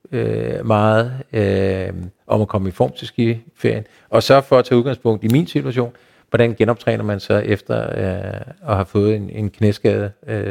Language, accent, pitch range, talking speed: Danish, native, 105-140 Hz, 175 wpm